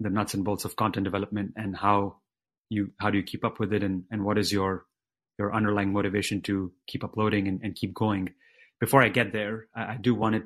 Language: English